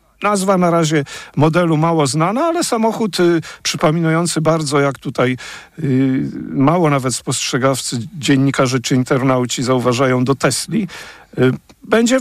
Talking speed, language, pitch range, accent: 125 wpm, Polish, 135-190 Hz, native